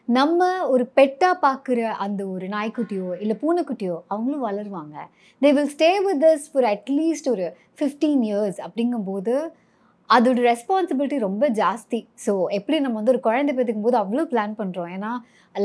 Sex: male